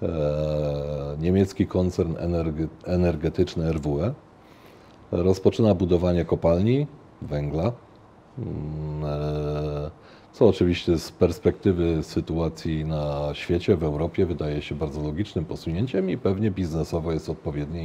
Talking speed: 90 wpm